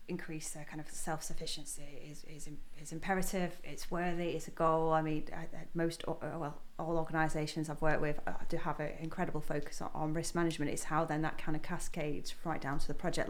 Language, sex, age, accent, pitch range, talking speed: English, female, 30-49, British, 160-190 Hz, 195 wpm